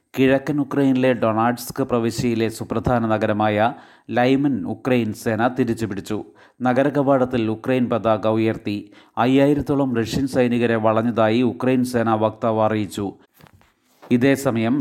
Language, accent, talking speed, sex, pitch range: Malayalam, native, 95 wpm, male, 115-130 Hz